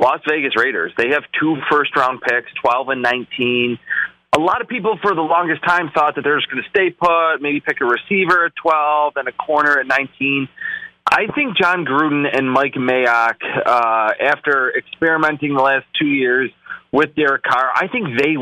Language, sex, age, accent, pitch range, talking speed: English, male, 30-49, American, 125-155 Hz, 190 wpm